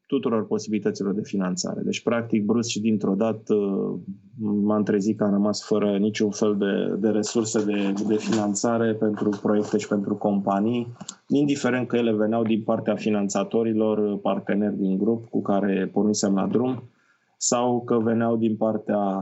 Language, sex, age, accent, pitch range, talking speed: Romanian, male, 20-39, native, 105-115 Hz, 155 wpm